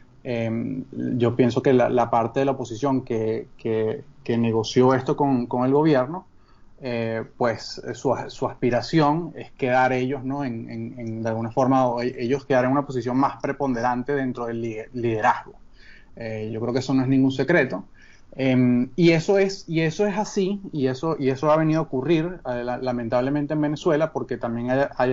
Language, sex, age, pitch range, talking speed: Spanish, male, 30-49, 120-145 Hz, 180 wpm